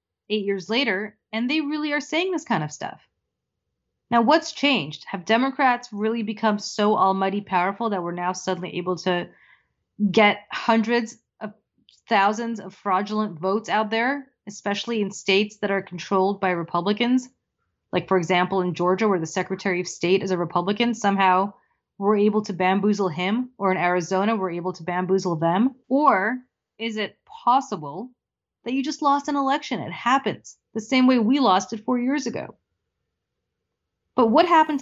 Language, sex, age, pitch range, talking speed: English, female, 30-49, 185-235 Hz, 165 wpm